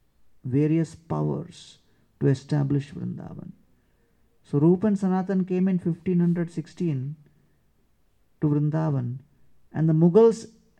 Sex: male